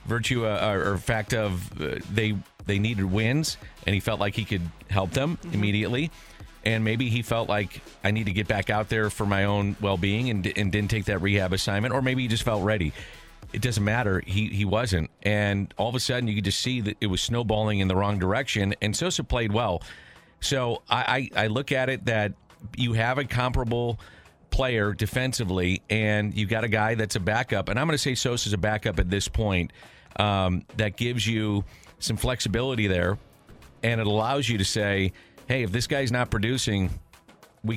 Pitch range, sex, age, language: 100-120 Hz, male, 40-59, English